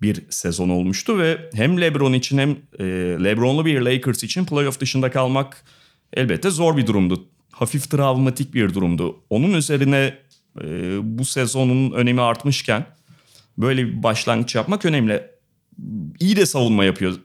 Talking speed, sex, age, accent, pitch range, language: 130 wpm, male, 30-49, native, 110-165 Hz, Turkish